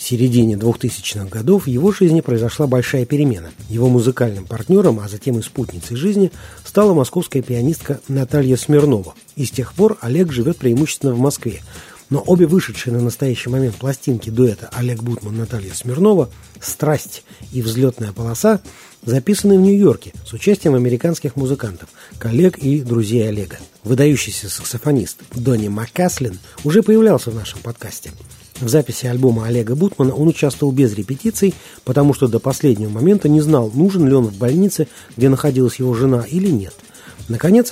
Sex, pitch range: male, 115-150 Hz